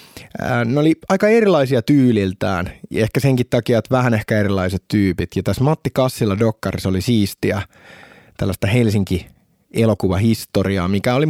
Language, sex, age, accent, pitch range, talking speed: Finnish, male, 20-39, native, 95-125 Hz, 130 wpm